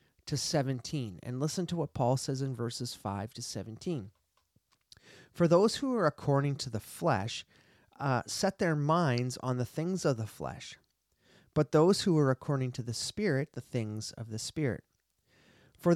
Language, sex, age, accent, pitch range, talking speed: English, male, 30-49, American, 120-155 Hz, 170 wpm